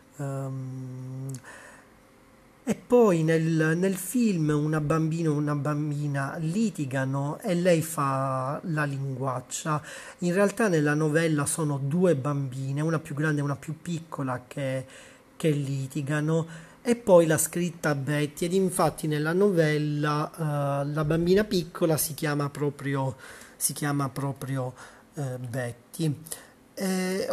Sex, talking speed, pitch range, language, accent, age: male, 125 wpm, 135-160 Hz, Italian, native, 40-59